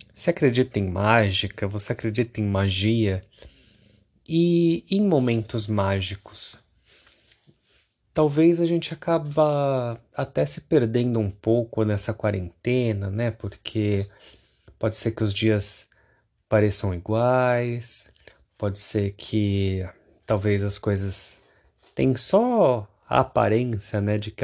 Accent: Brazilian